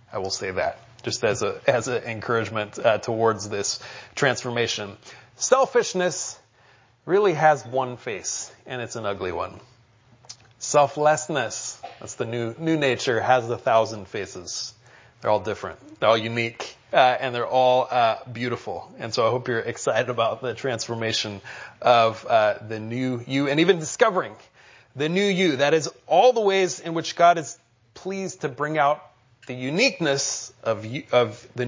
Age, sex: 30-49, male